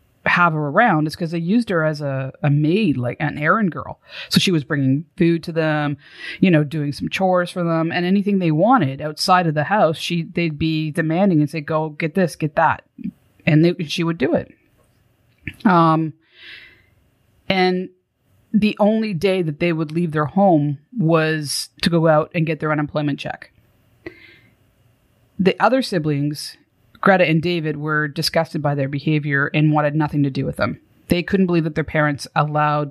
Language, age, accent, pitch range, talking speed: English, 30-49, American, 150-180 Hz, 180 wpm